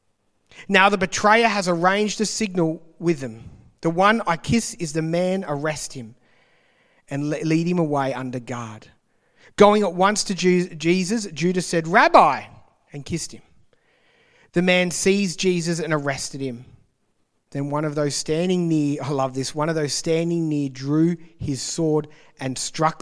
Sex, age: male, 30-49